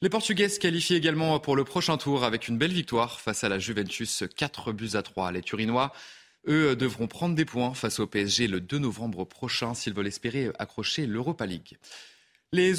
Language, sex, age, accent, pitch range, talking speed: French, male, 20-39, French, 105-145 Hz, 195 wpm